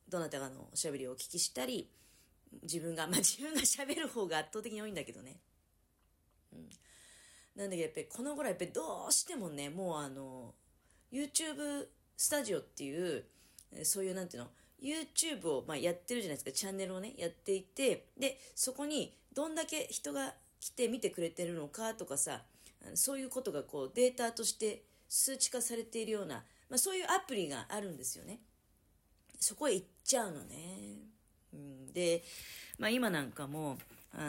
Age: 40-59